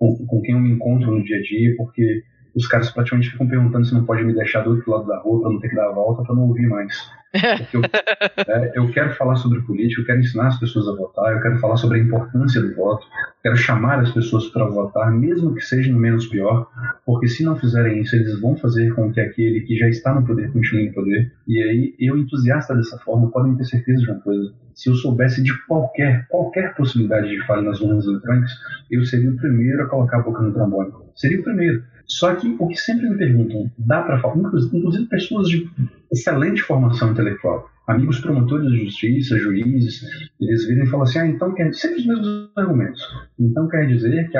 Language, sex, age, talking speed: Portuguese, male, 40-59, 225 wpm